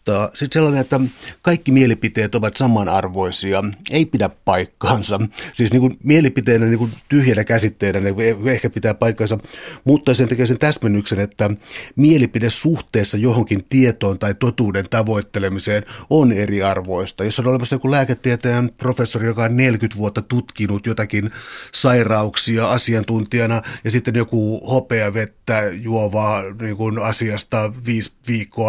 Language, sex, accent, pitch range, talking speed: Finnish, male, native, 105-130 Hz, 130 wpm